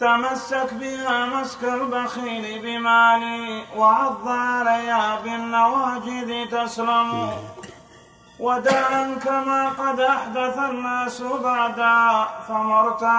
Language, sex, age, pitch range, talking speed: Arabic, male, 30-49, 235-260 Hz, 75 wpm